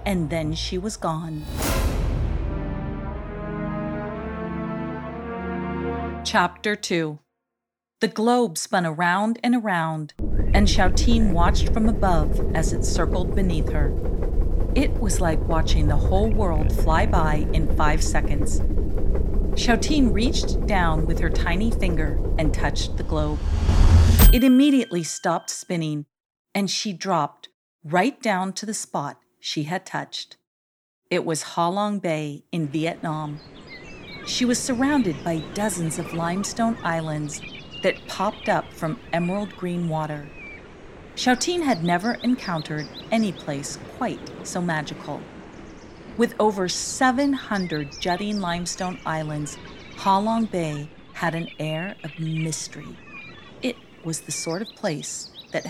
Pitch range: 145-200 Hz